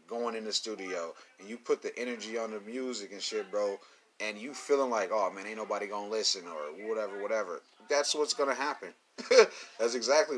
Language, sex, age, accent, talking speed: English, male, 30-49, American, 210 wpm